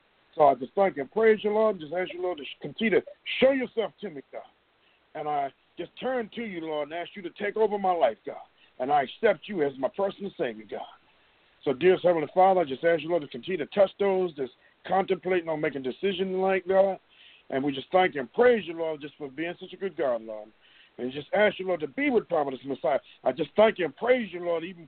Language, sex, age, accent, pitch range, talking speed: English, male, 50-69, American, 155-195 Hz, 245 wpm